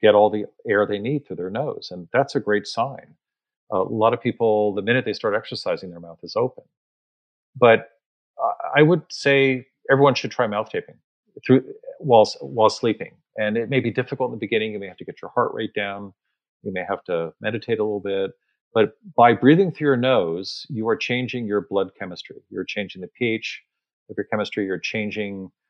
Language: English